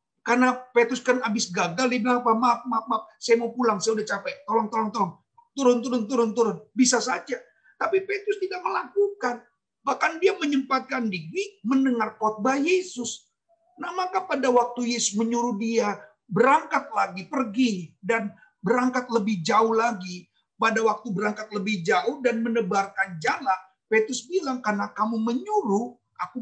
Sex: male